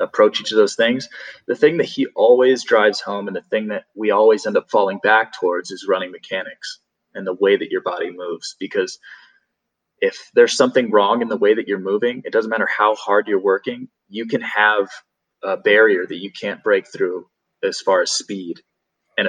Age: 20-39